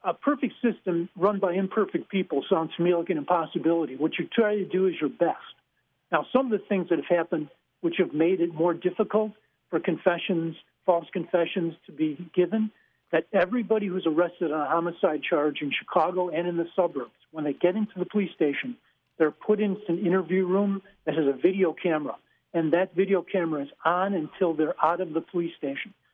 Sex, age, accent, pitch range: male, 50-69, American, 165-200 Hz